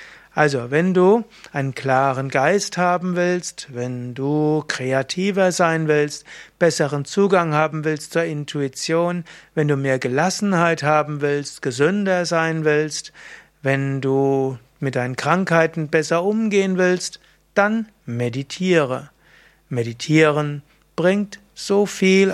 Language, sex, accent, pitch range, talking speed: German, male, German, 140-180 Hz, 115 wpm